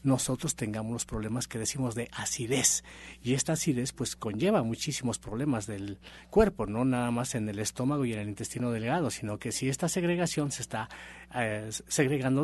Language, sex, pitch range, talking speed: Spanish, male, 110-140 Hz, 180 wpm